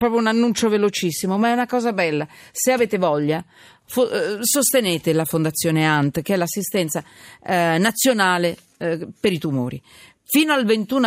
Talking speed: 155 wpm